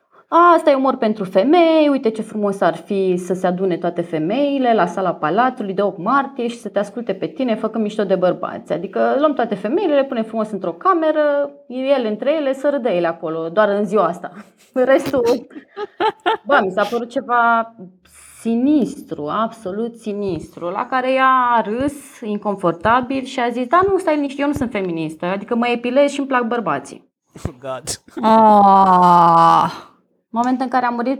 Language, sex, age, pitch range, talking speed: Romanian, female, 20-39, 175-255 Hz, 175 wpm